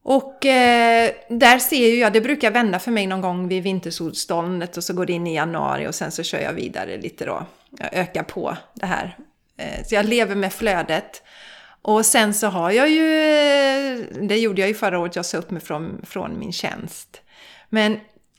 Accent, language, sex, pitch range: native, Swedish, female, 175-225 Hz